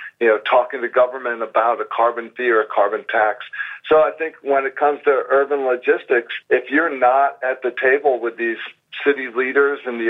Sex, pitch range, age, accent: male, 120-155 Hz, 50-69, American